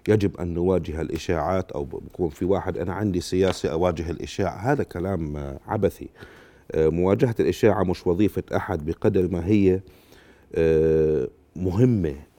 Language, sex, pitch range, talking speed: Arabic, male, 85-105 Hz, 125 wpm